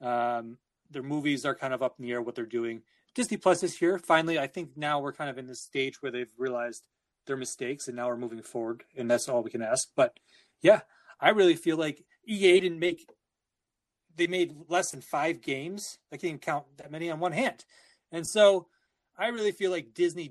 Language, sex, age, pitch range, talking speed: English, male, 30-49, 130-180 Hz, 210 wpm